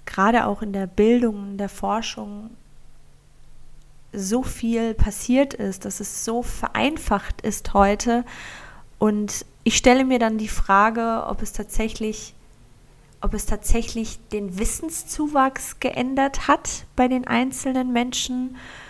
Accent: German